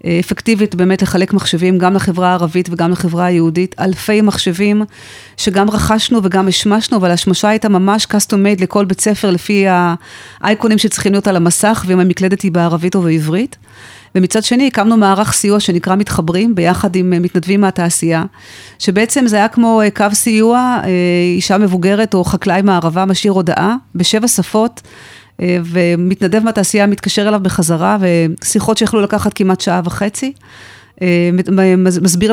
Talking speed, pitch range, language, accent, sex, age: 140 wpm, 180-205 Hz, Hebrew, native, female, 40-59